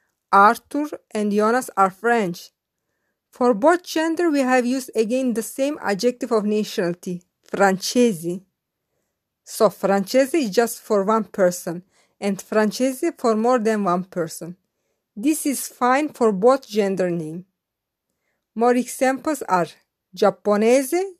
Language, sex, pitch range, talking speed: English, female, 185-260 Hz, 120 wpm